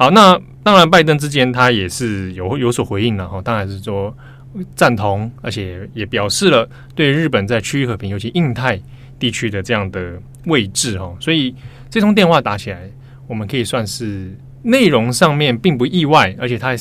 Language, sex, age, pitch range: Chinese, male, 20-39, 105-135 Hz